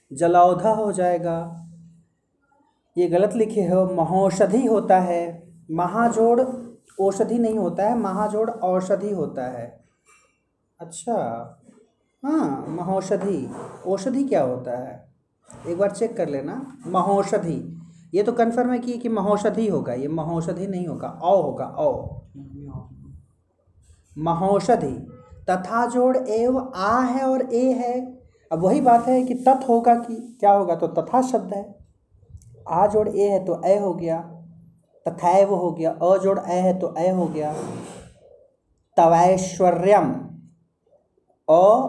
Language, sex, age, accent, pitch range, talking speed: Hindi, male, 30-49, native, 170-235 Hz, 130 wpm